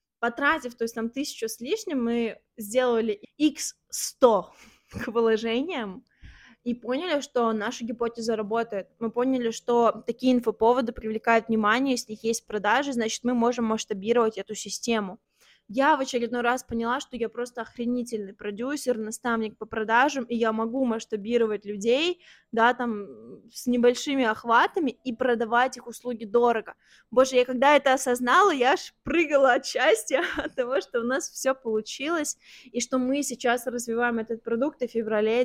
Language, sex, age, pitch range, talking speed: Russian, female, 20-39, 220-255 Hz, 150 wpm